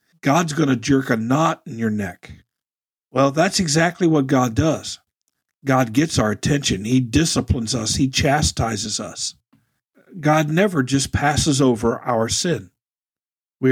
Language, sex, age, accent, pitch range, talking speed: English, male, 50-69, American, 115-145 Hz, 145 wpm